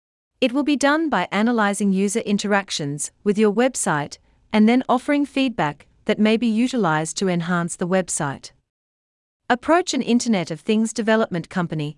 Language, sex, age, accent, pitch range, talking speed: English, female, 40-59, Australian, 160-230 Hz, 150 wpm